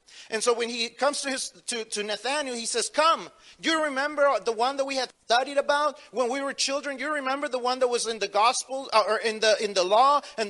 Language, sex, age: Spanish, male, 40-59